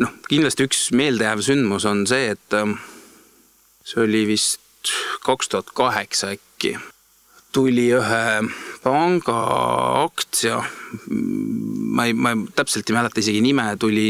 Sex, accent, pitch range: male, Finnish, 105-140 Hz